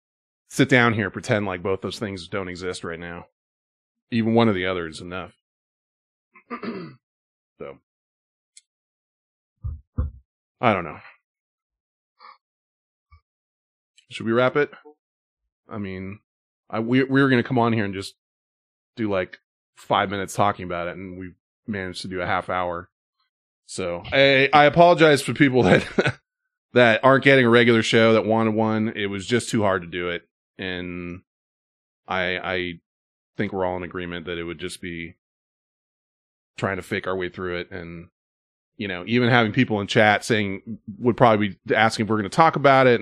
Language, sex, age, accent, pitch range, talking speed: English, male, 20-39, American, 90-115 Hz, 165 wpm